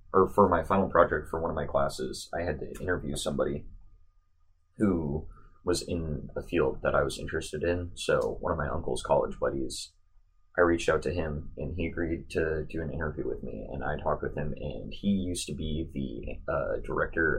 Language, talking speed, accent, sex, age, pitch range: English, 205 wpm, American, male, 20-39, 75-90 Hz